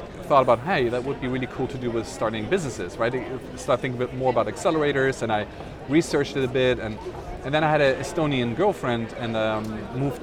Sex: male